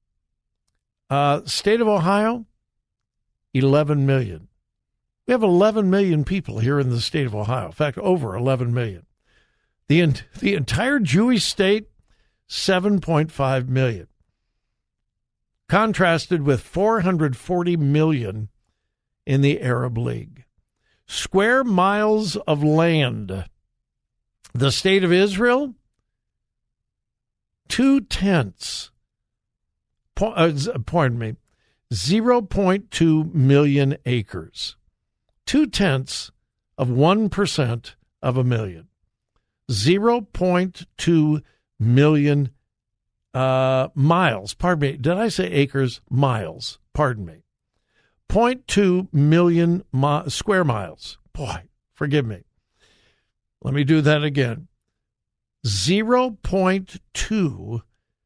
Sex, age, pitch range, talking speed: male, 60-79, 115-185 Hz, 85 wpm